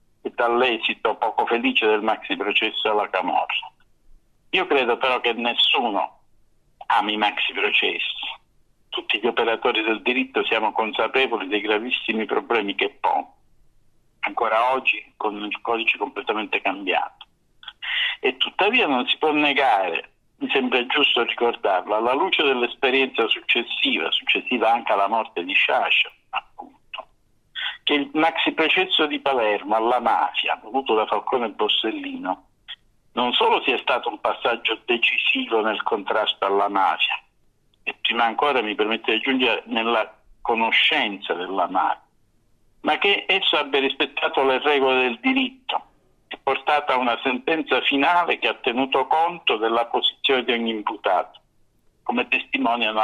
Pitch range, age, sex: 110-165 Hz, 50-69, male